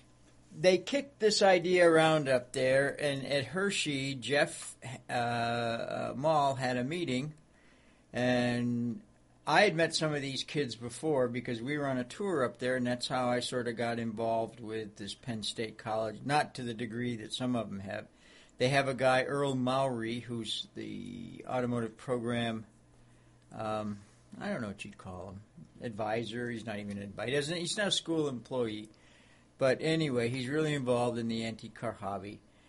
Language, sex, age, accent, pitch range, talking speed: English, male, 60-79, American, 105-135 Hz, 175 wpm